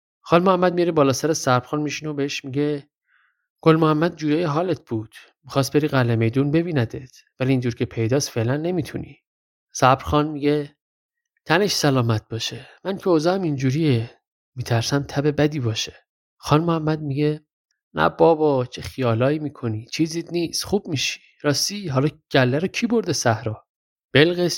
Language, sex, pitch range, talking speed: Persian, male, 120-160 Hz, 145 wpm